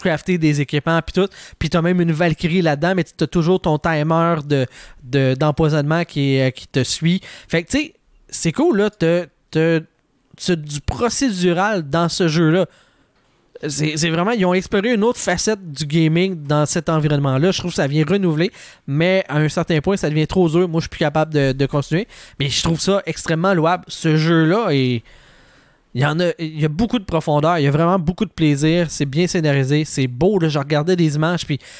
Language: French